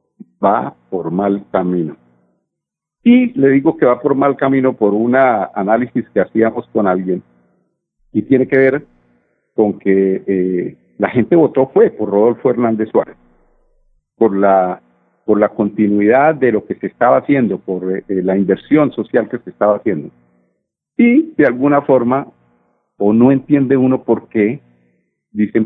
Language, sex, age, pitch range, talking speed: Spanish, male, 50-69, 85-120 Hz, 150 wpm